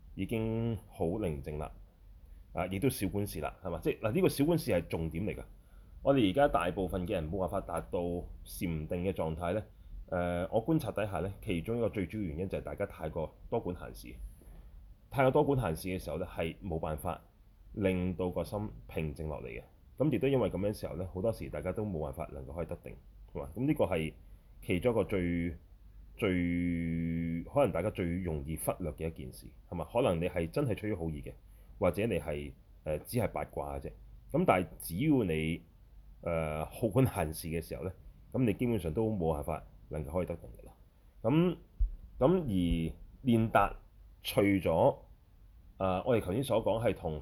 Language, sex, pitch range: Chinese, male, 80-105 Hz